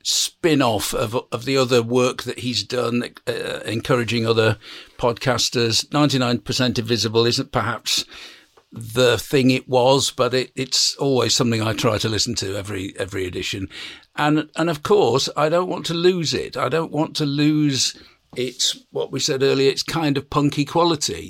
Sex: male